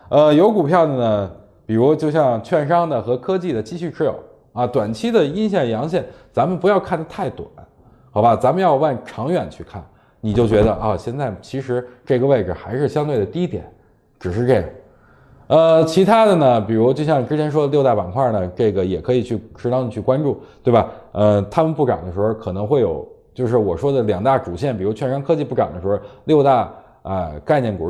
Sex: male